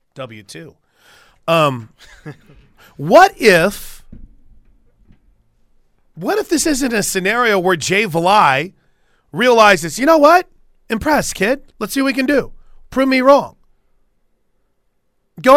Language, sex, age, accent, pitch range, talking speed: English, male, 30-49, American, 165-245 Hz, 110 wpm